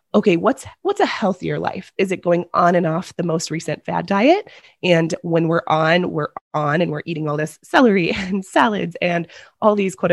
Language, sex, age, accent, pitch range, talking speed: English, female, 20-39, American, 160-200 Hz, 205 wpm